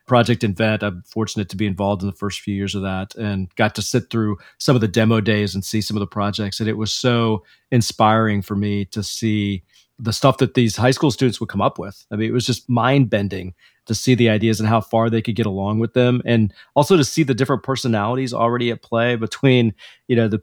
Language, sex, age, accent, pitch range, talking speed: English, male, 40-59, American, 105-125 Hz, 245 wpm